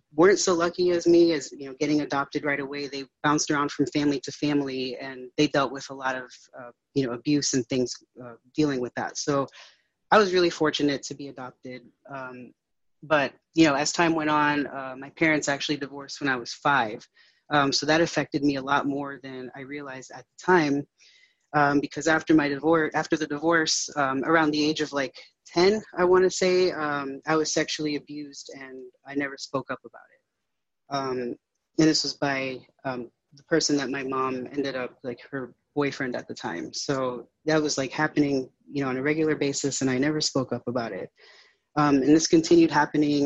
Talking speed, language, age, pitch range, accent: 205 wpm, English, 30-49, 135-155 Hz, American